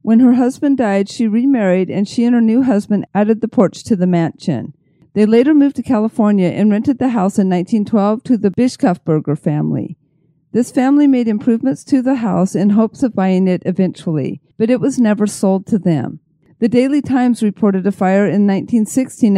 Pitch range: 185-235 Hz